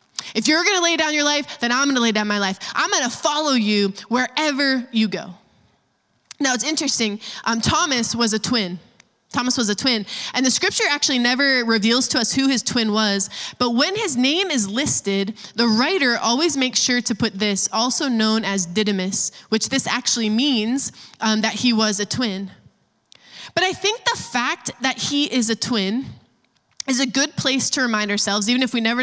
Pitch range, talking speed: 225-295 Hz, 200 wpm